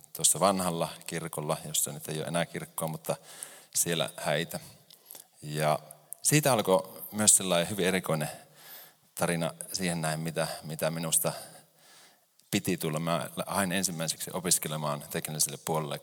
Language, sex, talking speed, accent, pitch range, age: Finnish, male, 125 wpm, native, 75-85 Hz, 30-49